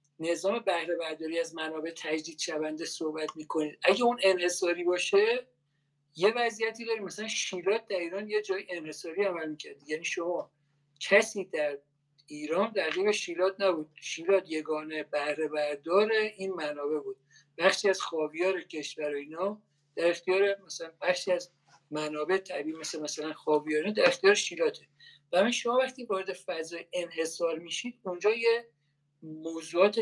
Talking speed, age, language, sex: 135 wpm, 50-69, Persian, male